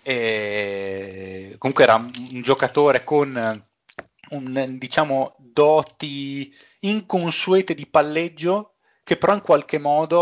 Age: 20-39